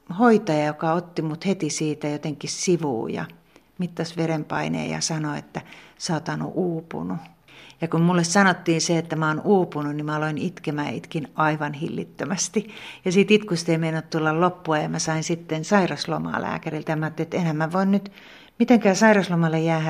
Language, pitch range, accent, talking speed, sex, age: Finnish, 155-185 Hz, native, 155 wpm, female, 60-79